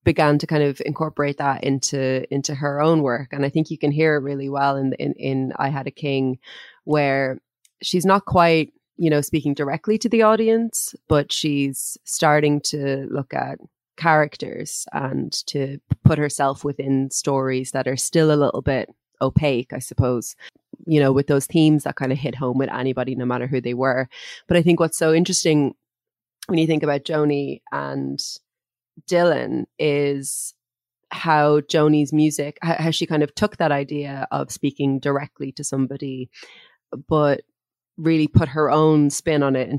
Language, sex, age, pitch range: English, female, 30-49, 135-155 Hz